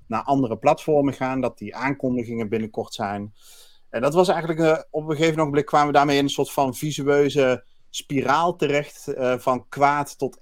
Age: 50-69